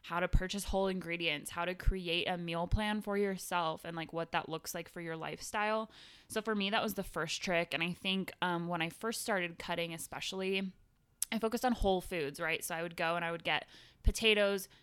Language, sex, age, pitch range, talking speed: English, female, 20-39, 170-205 Hz, 225 wpm